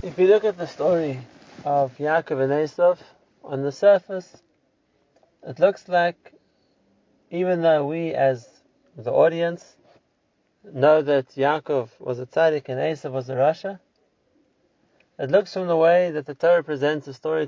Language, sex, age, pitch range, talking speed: English, male, 30-49, 135-175 Hz, 150 wpm